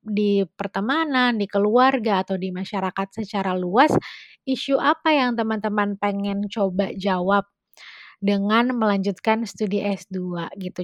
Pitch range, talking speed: 195-240 Hz, 115 wpm